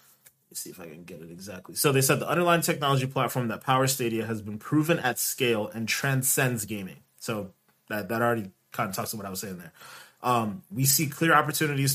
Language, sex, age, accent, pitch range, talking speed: English, male, 20-39, American, 115-135 Hz, 220 wpm